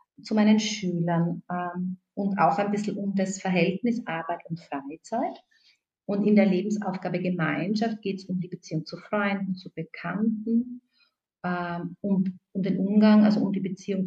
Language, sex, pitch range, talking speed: German, female, 175-210 Hz, 160 wpm